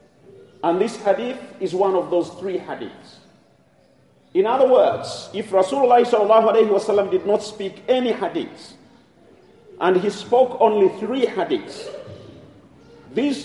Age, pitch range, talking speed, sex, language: 50-69, 180-240 Hz, 115 wpm, male, English